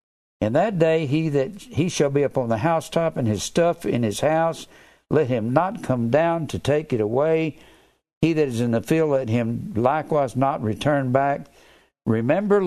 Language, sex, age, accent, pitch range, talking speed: English, male, 60-79, American, 115-155 Hz, 190 wpm